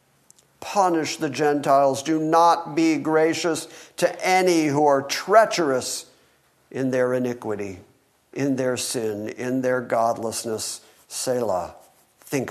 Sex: male